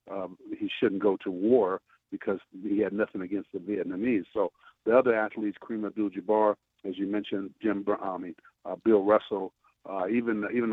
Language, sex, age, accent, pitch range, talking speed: English, male, 50-69, American, 100-115 Hz, 180 wpm